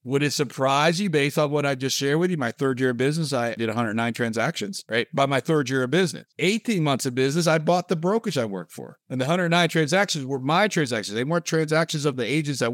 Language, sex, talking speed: English, male, 250 wpm